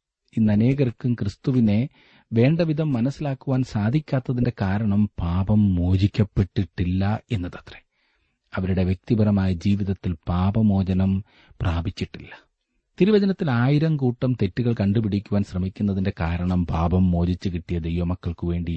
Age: 30-49